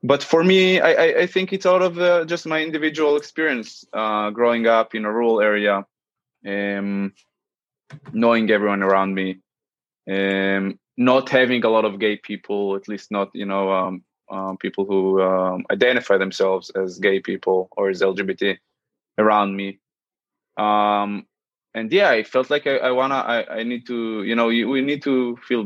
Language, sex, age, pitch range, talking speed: English, male, 20-39, 95-120 Hz, 175 wpm